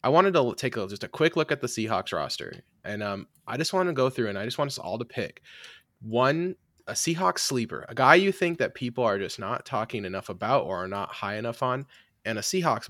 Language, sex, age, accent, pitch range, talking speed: English, male, 20-39, American, 100-125 Hz, 245 wpm